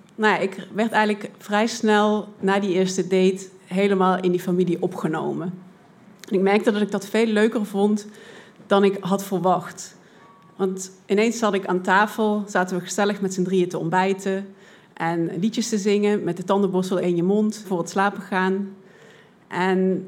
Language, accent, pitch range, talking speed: Dutch, Dutch, 185-210 Hz, 170 wpm